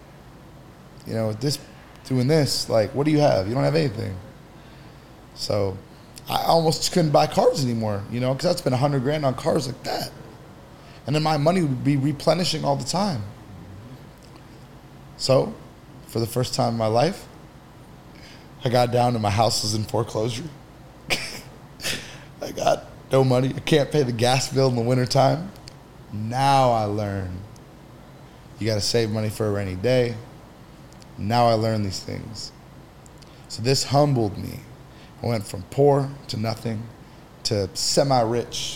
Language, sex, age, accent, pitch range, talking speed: English, male, 20-39, American, 115-140 Hz, 160 wpm